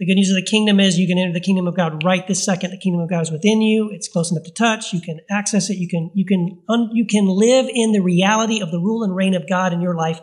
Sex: male